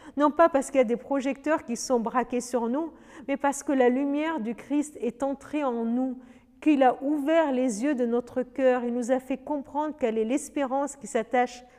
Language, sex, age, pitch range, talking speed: French, female, 50-69, 230-280 Hz, 215 wpm